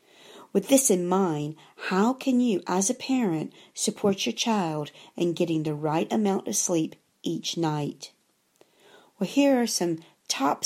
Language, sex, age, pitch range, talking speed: English, female, 50-69, 160-210 Hz, 150 wpm